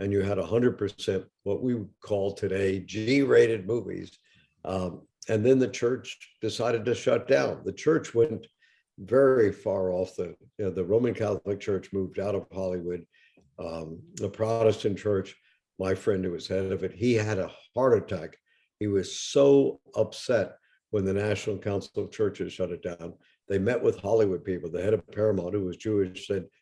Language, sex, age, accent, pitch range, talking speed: English, male, 60-79, American, 95-125 Hz, 185 wpm